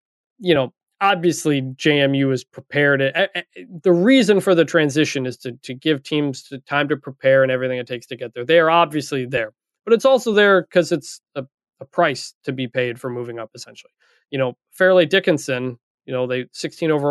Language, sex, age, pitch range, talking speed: English, male, 20-39, 130-170 Hz, 195 wpm